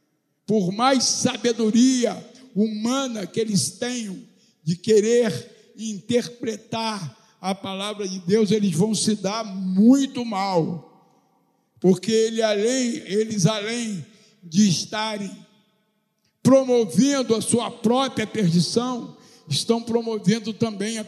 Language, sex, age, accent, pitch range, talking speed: Portuguese, male, 60-79, Brazilian, 195-250 Hz, 95 wpm